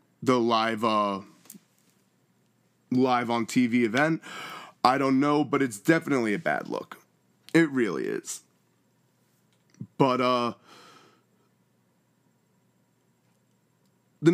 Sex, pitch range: male, 120-145 Hz